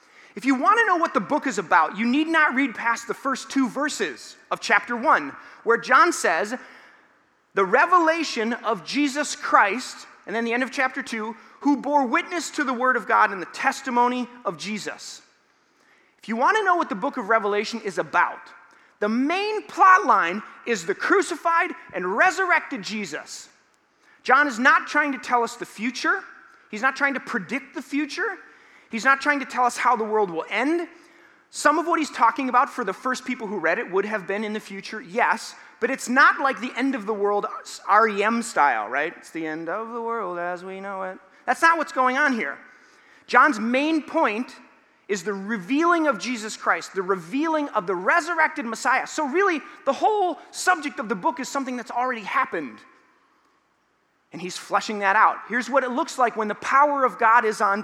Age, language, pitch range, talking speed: 30-49, English, 225-300 Hz, 200 wpm